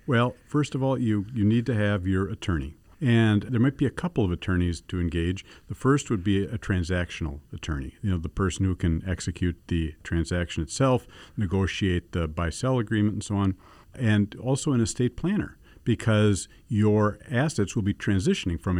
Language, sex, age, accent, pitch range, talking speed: English, male, 50-69, American, 90-115 Hz, 180 wpm